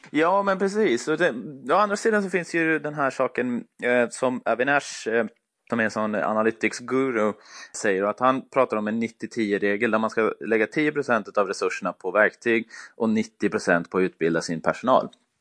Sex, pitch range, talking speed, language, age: male, 100-125 Hz, 170 wpm, Swedish, 20-39